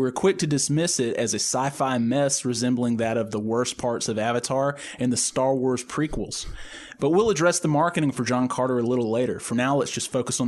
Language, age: English, 20-39